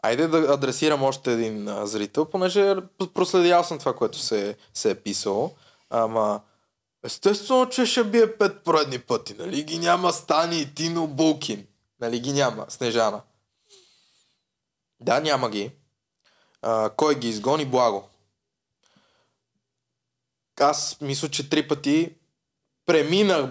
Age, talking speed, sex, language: 20-39, 120 wpm, male, Bulgarian